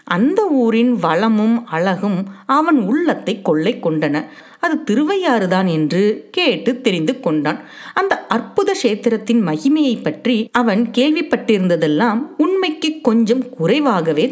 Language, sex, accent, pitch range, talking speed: Tamil, female, native, 185-275 Hz, 100 wpm